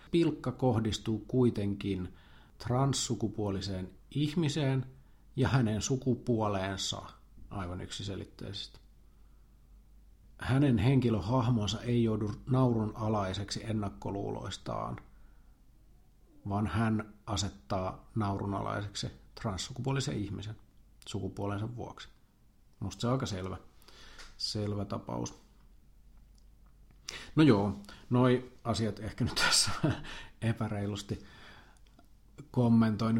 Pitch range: 100-125 Hz